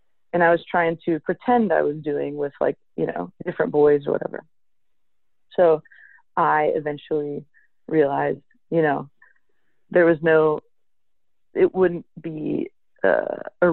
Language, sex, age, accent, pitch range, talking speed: English, female, 30-49, American, 155-210 Hz, 135 wpm